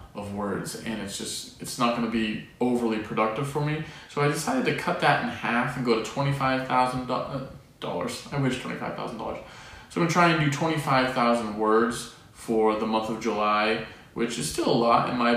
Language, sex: English, male